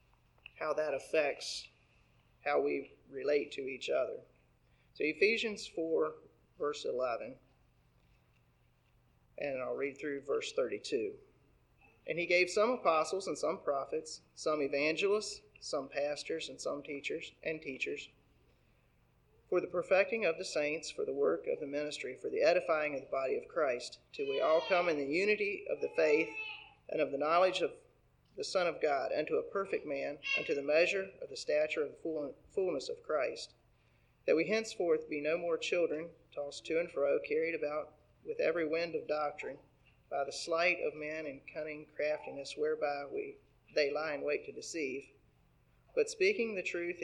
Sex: male